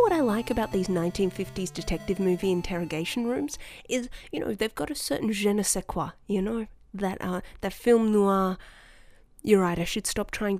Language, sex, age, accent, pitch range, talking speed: English, female, 20-39, Australian, 180-255 Hz, 190 wpm